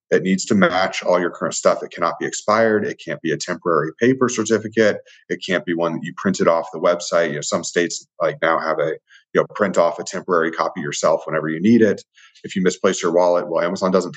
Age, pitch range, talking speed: 30-49, 85-110 Hz, 240 wpm